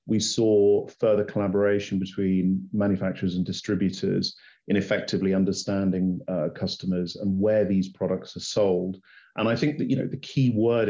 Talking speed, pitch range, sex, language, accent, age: 145 wpm, 95-105 Hz, male, English, British, 40-59